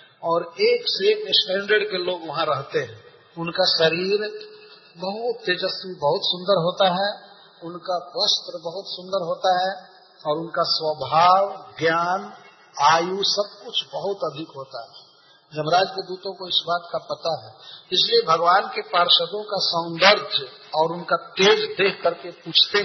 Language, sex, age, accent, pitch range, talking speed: Hindi, male, 40-59, native, 170-210 Hz, 140 wpm